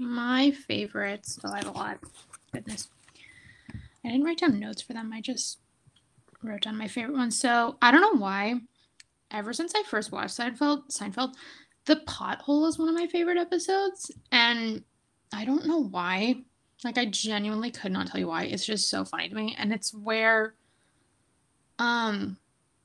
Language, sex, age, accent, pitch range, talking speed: English, female, 10-29, American, 210-270 Hz, 170 wpm